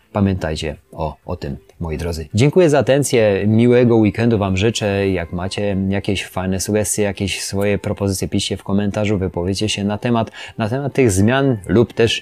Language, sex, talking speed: Polish, male, 165 wpm